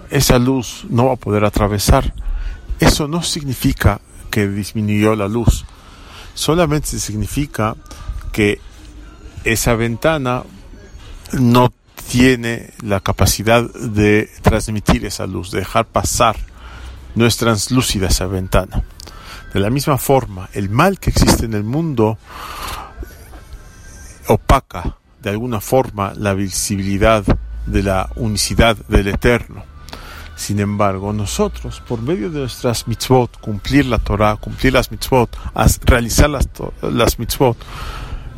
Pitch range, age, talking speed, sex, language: 85-120 Hz, 40-59, 120 wpm, male, English